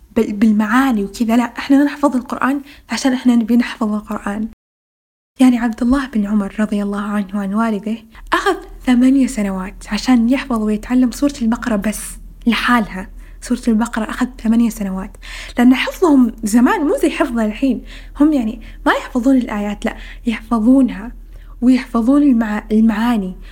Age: 10-29